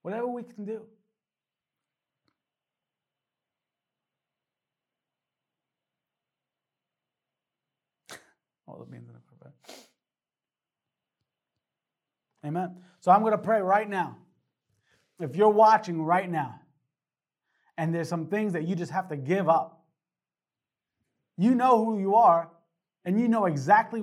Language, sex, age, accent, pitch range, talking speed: English, male, 30-49, American, 170-225 Hz, 90 wpm